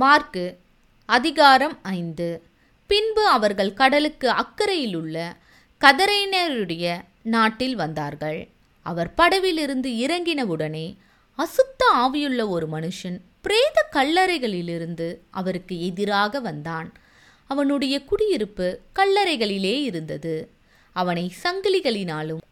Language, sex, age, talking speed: Tamil, female, 20-39, 75 wpm